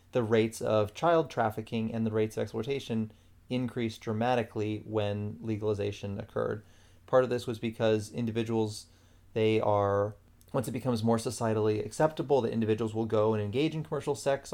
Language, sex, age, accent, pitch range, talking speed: English, male, 30-49, American, 105-115 Hz, 155 wpm